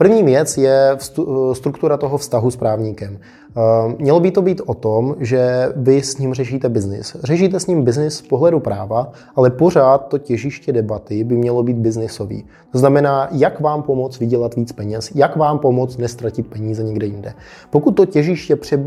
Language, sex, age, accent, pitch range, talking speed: Czech, male, 20-39, native, 120-145 Hz, 170 wpm